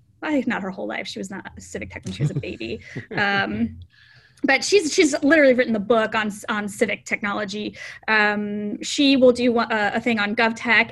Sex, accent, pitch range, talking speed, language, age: female, American, 215-265 Hz, 205 wpm, English, 20-39